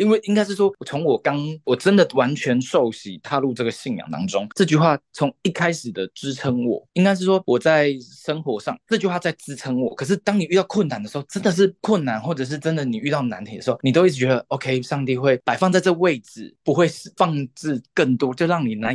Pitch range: 130-185 Hz